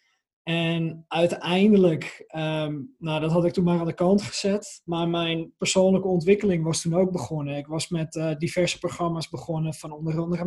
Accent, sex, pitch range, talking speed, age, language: Dutch, male, 155-190 Hz, 165 wpm, 20-39, Dutch